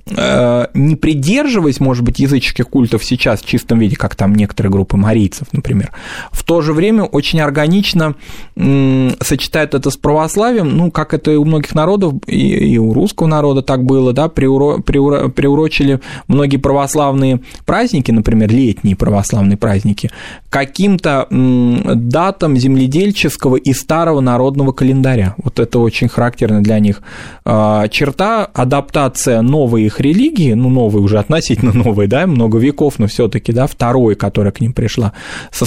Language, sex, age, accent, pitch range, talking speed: Russian, male, 20-39, native, 120-150 Hz, 140 wpm